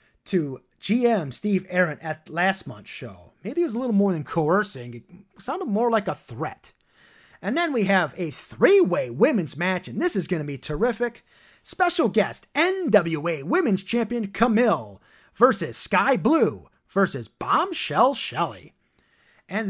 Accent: American